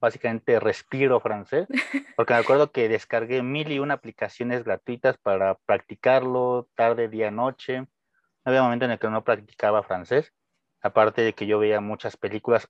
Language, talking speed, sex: French, 160 wpm, male